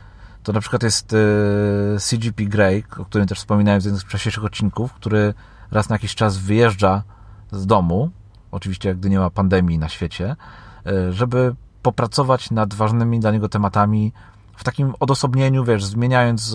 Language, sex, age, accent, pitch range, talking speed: Polish, male, 30-49, native, 100-120 Hz, 150 wpm